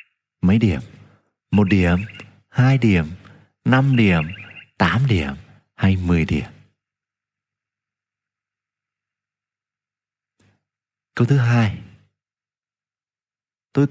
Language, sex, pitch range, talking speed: Vietnamese, male, 90-135 Hz, 75 wpm